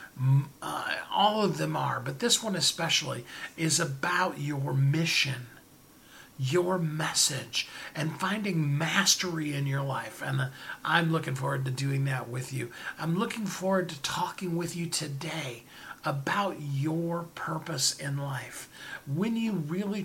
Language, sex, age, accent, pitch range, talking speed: English, male, 50-69, American, 145-185 Hz, 140 wpm